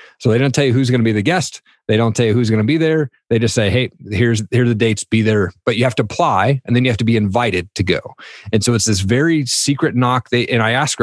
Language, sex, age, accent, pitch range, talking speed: English, male, 30-49, American, 105-130 Hz, 300 wpm